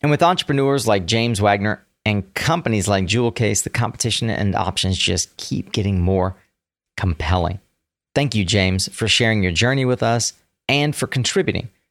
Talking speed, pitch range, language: 160 wpm, 95-115 Hz, English